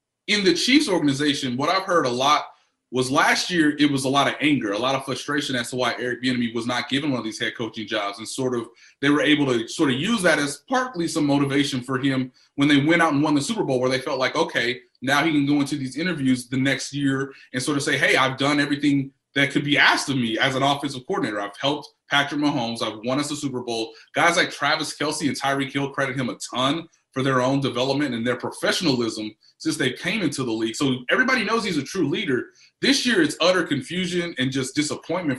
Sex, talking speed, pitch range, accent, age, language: male, 245 wpm, 130-175 Hz, American, 20-39, English